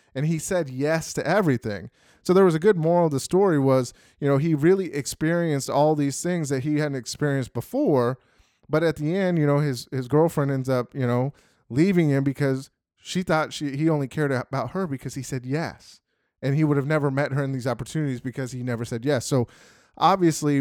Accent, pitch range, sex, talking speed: American, 125-150 Hz, male, 215 wpm